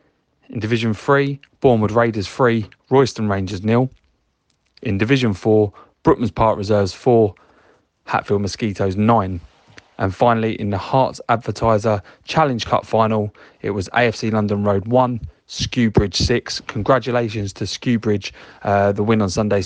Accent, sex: British, male